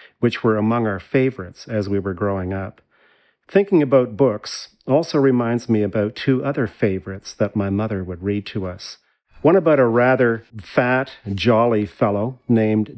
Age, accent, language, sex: 50-69, American, English, male